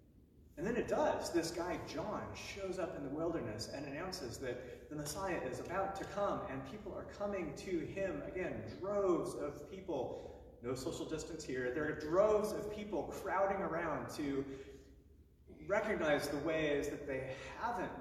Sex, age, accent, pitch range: male, 30-49, American, 110-170 Hz